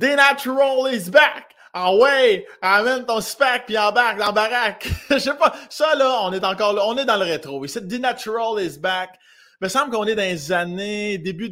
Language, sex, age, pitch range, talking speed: French, male, 20-39, 155-215 Hz, 230 wpm